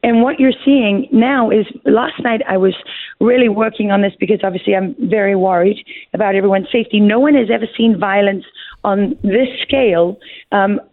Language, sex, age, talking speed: English, female, 40-59, 175 wpm